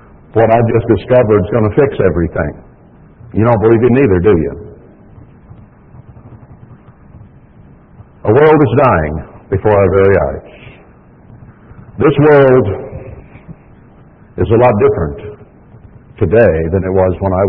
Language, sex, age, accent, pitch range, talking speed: English, male, 60-79, American, 95-125 Hz, 125 wpm